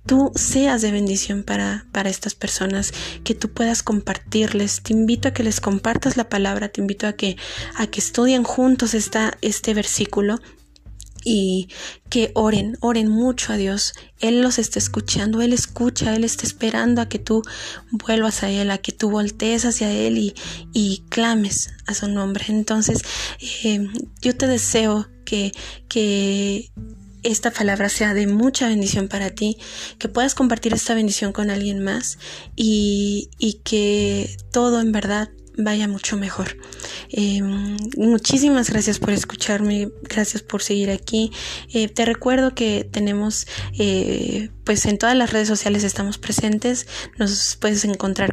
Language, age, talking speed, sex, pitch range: Spanish, 20-39, 150 wpm, female, 200-230 Hz